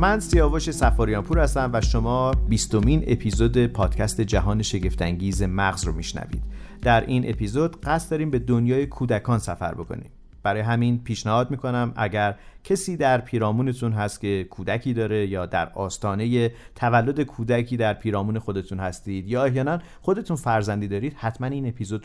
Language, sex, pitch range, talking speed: Persian, male, 105-125 Hz, 145 wpm